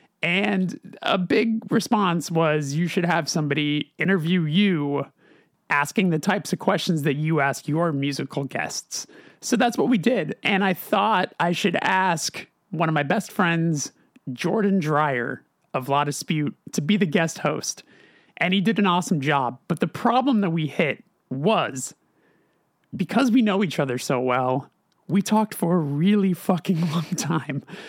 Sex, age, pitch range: male, 30-49, 150-200 Hz